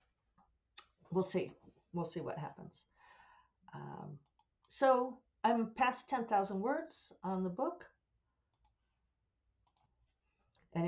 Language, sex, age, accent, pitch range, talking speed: English, female, 50-69, American, 155-215 Hz, 90 wpm